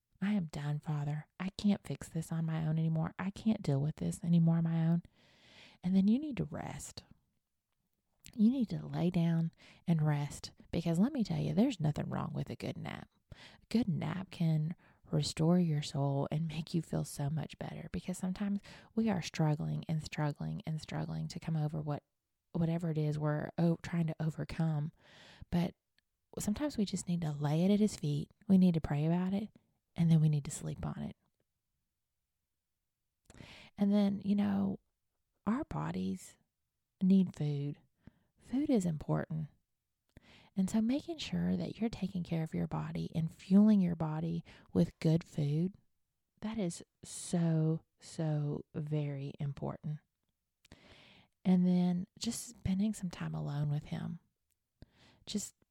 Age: 20-39